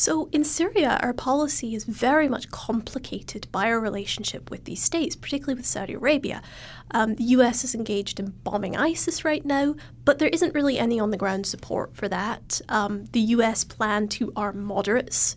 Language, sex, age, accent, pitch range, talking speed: English, female, 30-49, American, 210-280 Hz, 175 wpm